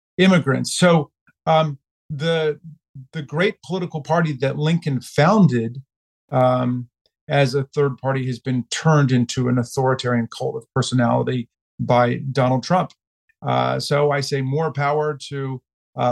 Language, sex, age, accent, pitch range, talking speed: English, male, 50-69, American, 125-150 Hz, 135 wpm